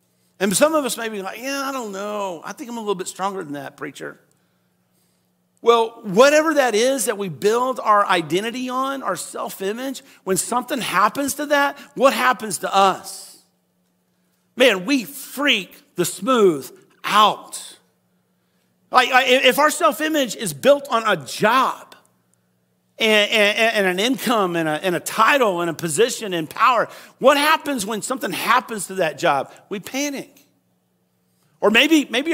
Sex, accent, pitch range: male, American, 185-270 Hz